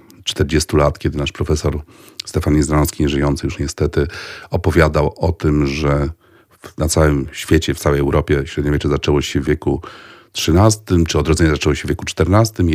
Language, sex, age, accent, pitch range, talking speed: Polish, male, 40-59, native, 75-95 Hz, 155 wpm